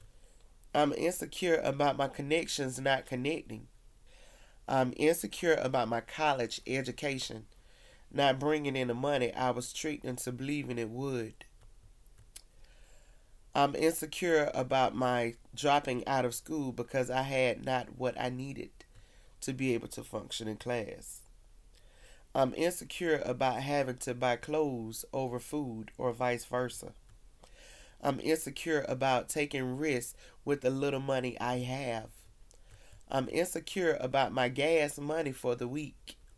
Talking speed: 130 wpm